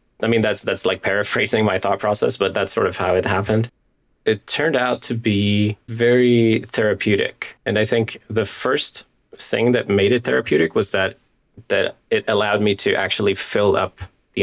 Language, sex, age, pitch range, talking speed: English, male, 30-49, 90-110 Hz, 185 wpm